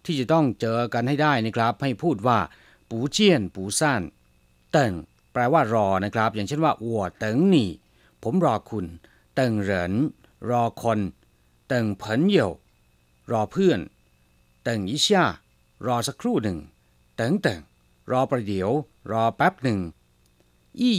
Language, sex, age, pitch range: Chinese, male, 60-79, 95-140 Hz